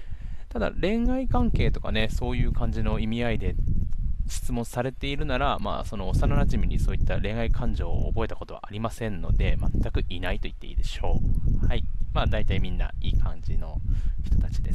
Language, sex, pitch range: Japanese, male, 85-110 Hz